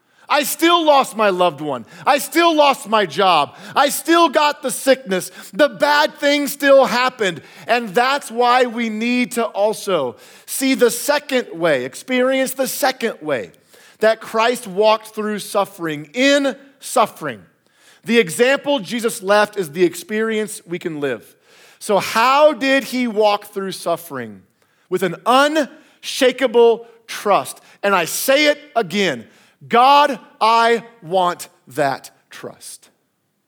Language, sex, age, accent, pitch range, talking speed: English, male, 40-59, American, 170-260 Hz, 135 wpm